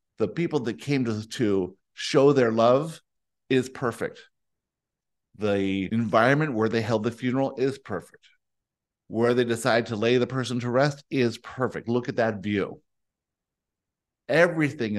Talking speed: 145 wpm